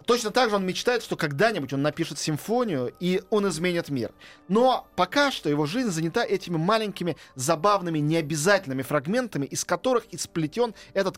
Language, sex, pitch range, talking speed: Russian, male, 140-175 Hz, 160 wpm